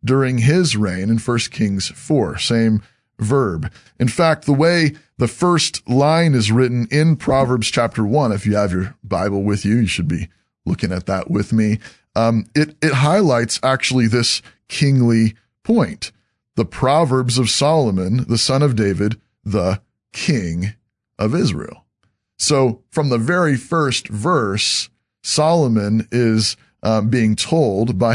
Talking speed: 145 wpm